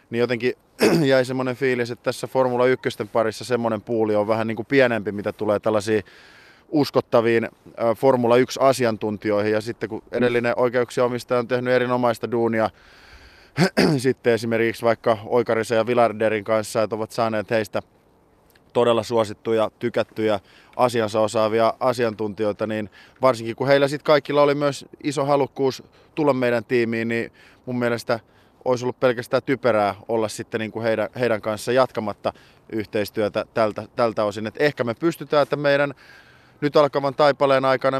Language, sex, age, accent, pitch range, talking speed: Finnish, male, 20-39, native, 110-130 Hz, 140 wpm